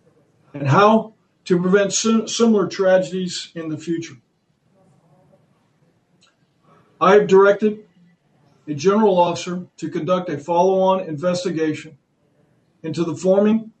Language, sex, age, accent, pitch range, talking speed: English, male, 50-69, American, 160-195 Hz, 100 wpm